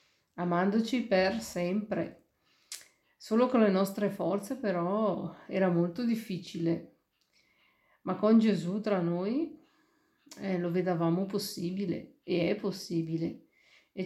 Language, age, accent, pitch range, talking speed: Italian, 50-69, native, 180-215 Hz, 105 wpm